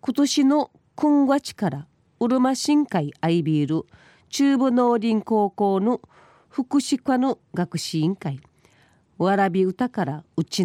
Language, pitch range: Japanese, 165-235 Hz